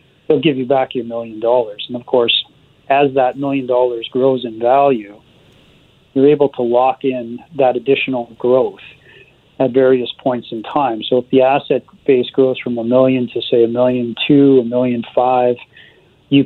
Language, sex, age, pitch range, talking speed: English, male, 40-59, 120-140 Hz, 175 wpm